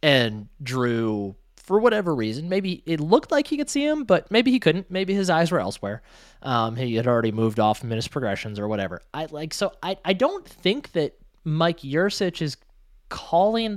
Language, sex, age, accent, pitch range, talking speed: English, male, 20-39, American, 130-185 Hz, 195 wpm